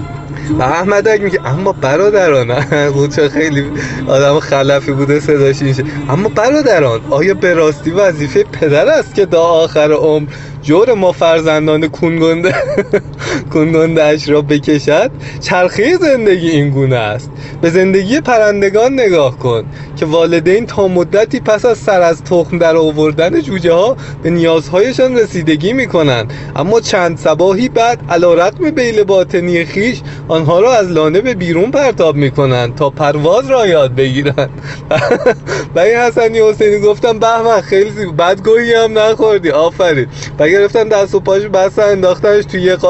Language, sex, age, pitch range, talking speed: Persian, male, 20-39, 140-200 Hz, 125 wpm